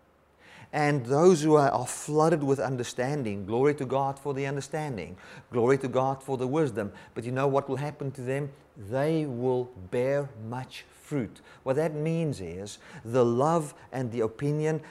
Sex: male